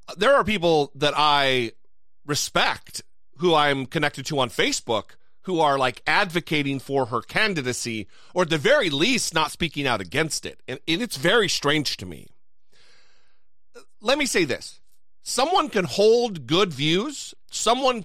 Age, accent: 40-59, American